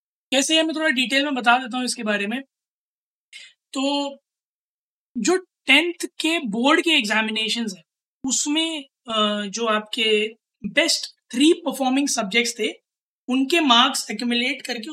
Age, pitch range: 20-39, 215-270 Hz